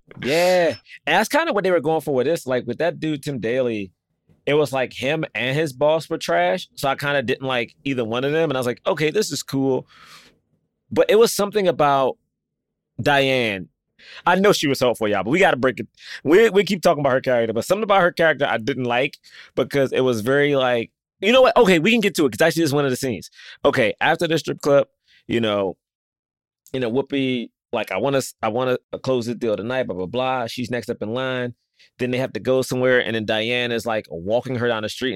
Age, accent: 20-39, American